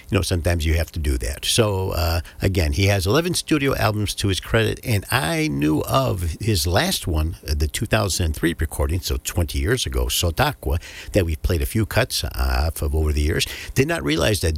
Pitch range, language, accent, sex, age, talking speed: 80-105 Hz, English, American, male, 60-79, 200 wpm